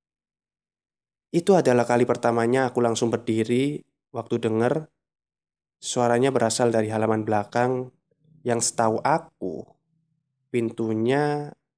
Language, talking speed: Indonesian, 90 wpm